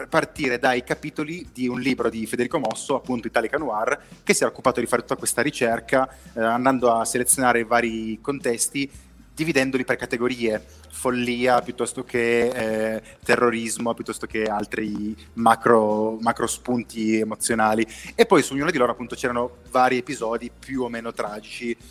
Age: 30-49